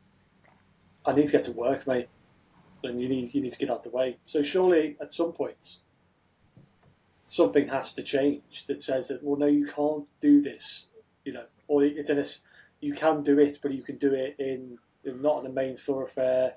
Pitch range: 130-150 Hz